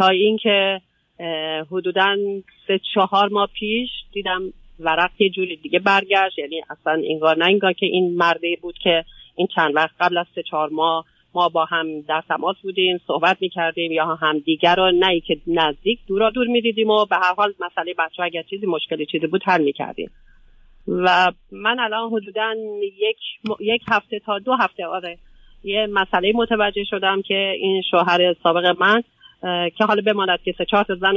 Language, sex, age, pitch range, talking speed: Persian, female, 40-59, 165-200 Hz, 175 wpm